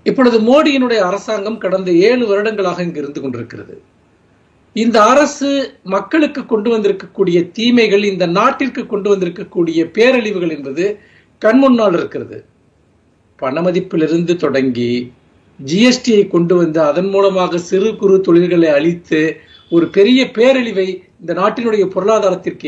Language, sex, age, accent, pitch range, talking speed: Tamil, male, 50-69, native, 180-250 Hz, 85 wpm